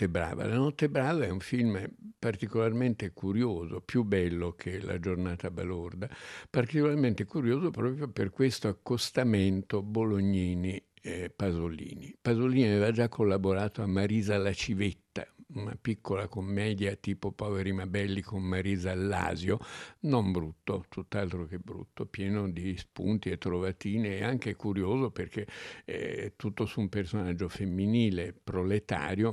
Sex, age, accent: male, 60-79, native